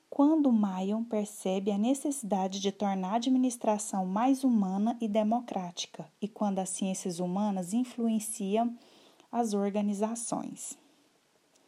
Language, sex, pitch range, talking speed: Portuguese, female, 195-250 Hz, 110 wpm